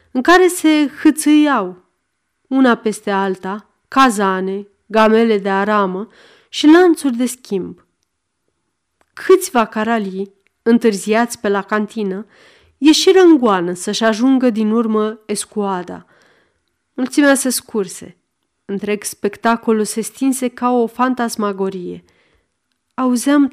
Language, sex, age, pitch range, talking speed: Romanian, female, 30-49, 205-260 Hz, 100 wpm